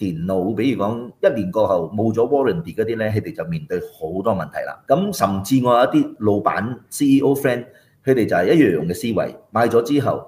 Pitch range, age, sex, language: 105-155 Hz, 30-49, male, Chinese